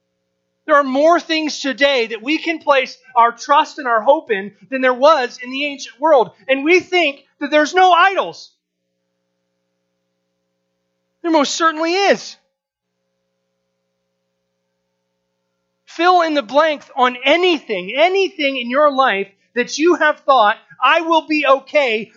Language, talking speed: English, 140 wpm